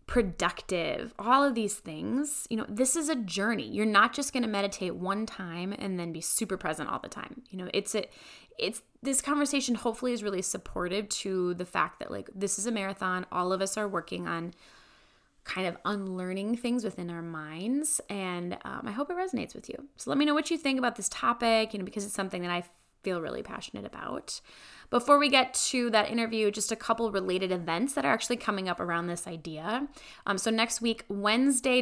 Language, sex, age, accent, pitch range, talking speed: English, female, 10-29, American, 190-250 Hz, 215 wpm